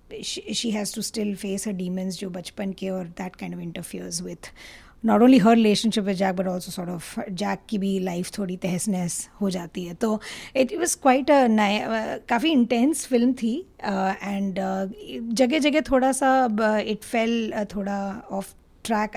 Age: 20-39